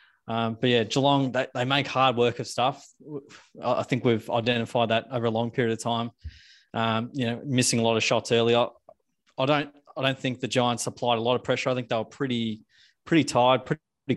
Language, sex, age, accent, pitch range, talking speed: English, male, 20-39, Australian, 115-130 Hz, 220 wpm